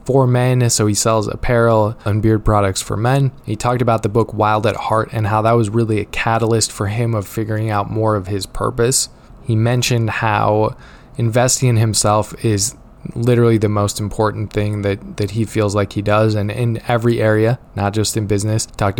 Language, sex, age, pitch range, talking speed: English, male, 20-39, 105-115 Hz, 200 wpm